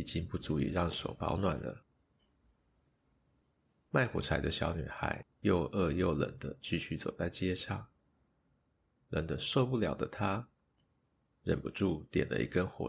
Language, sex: Chinese, male